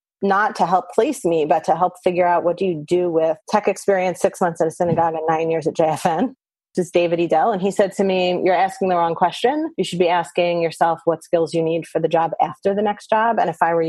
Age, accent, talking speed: 30-49, American, 265 wpm